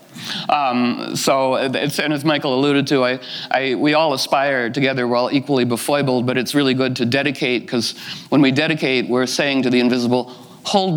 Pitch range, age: 120-155 Hz, 60-79